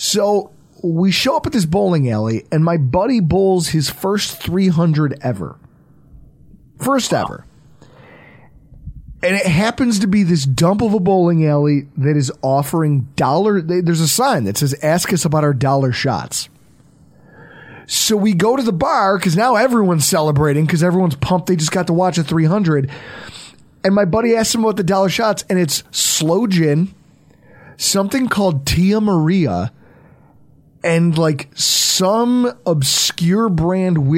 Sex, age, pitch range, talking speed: male, 30-49, 150-205 Hz, 155 wpm